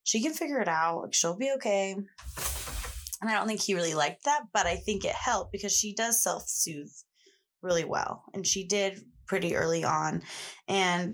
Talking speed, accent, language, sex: 185 wpm, American, English, female